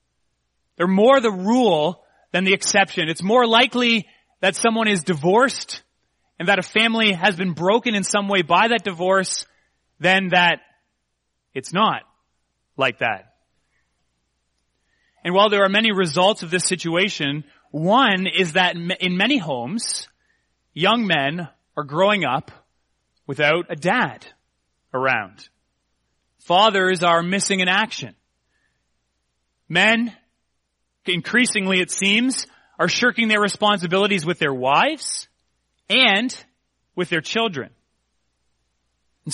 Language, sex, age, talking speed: English, male, 30-49, 120 wpm